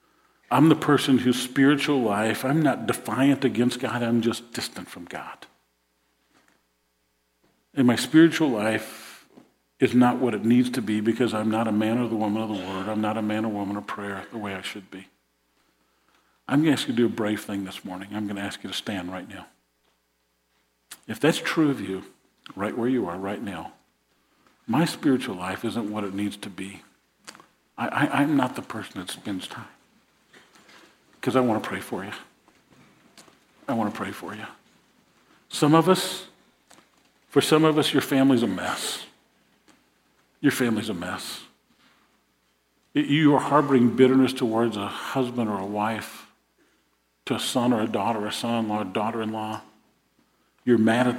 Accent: American